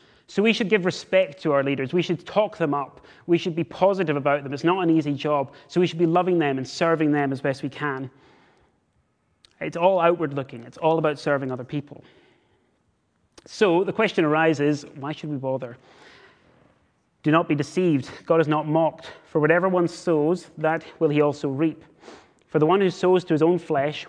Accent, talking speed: British, 200 wpm